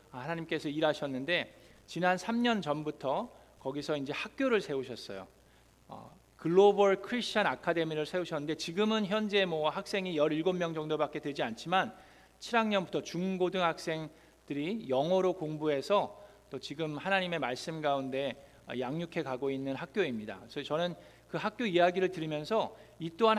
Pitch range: 155-200 Hz